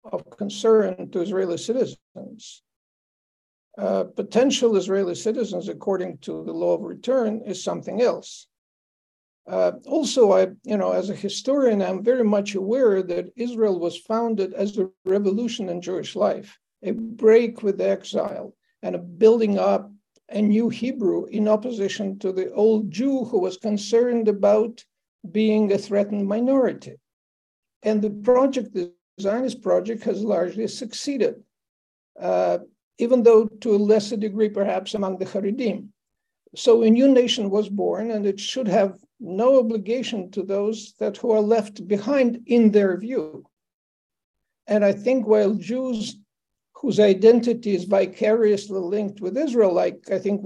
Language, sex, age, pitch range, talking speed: English, male, 60-79, 195-235 Hz, 145 wpm